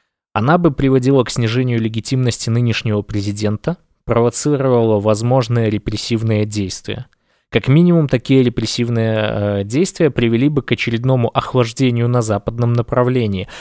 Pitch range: 105-130 Hz